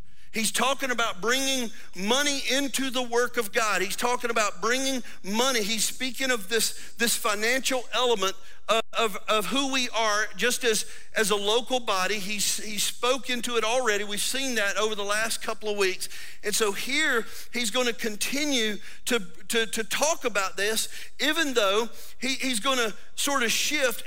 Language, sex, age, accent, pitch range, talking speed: English, male, 50-69, American, 180-240 Hz, 165 wpm